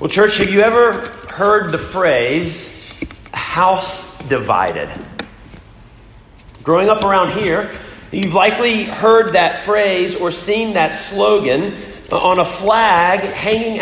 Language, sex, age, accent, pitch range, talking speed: English, male, 40-59, American, 150-205 Hz, 115 wpm